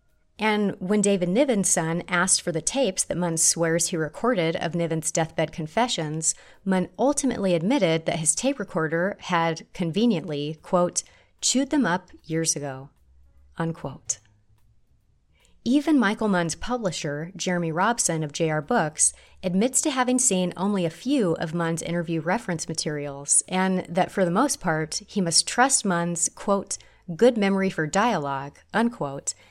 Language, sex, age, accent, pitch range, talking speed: English, female, 30-49, American, 160-205 Hz, 145 wpm